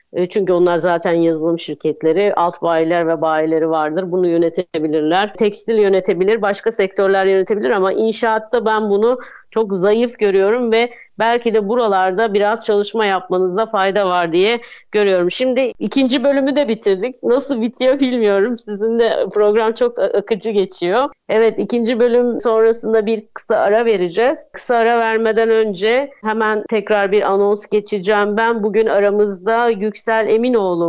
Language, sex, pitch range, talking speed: Turkish, female, 190-225 Hz, 140 wpm